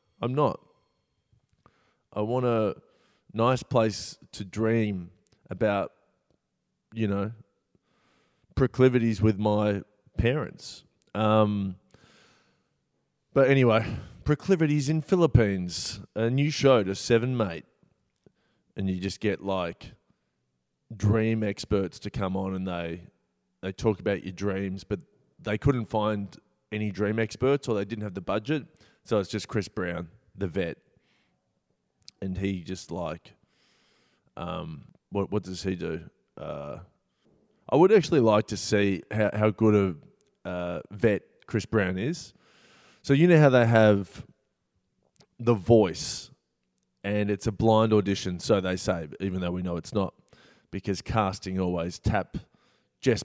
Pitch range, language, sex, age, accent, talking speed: 95-115 Hz, English, male, 20-39, Australian, 135 wpm